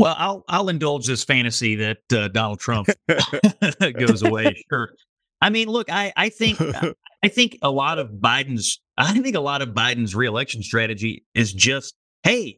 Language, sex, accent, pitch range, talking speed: English, male, American, 105-145 Hz, 170 wpm